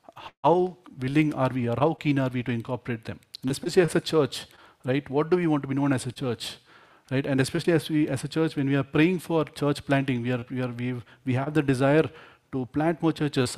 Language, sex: English, male